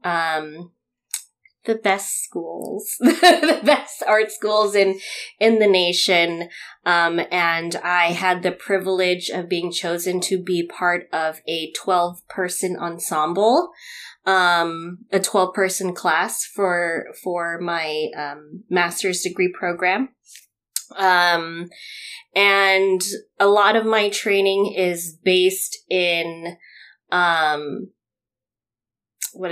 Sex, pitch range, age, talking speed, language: female, 170-205 Hz, 20-39, 110 wpm, English